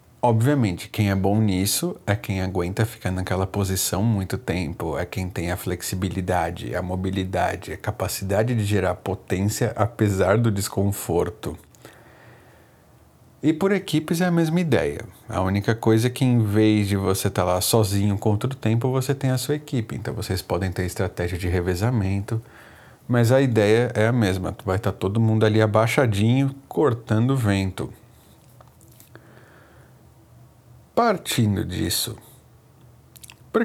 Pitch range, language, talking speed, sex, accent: 95-120 Hz, Portuguese, 145 wpm, male, Brazilian